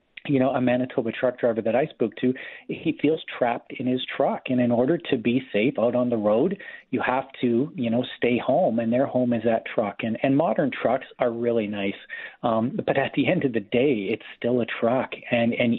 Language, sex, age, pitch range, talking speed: English, male, 40-59, 115-125 Hz, 230 wpm